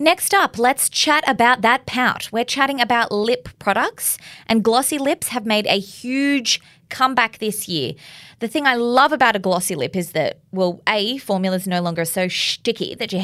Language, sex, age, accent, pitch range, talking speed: English, female, 20-39, Australian, 175-250 Hz, 190 wpm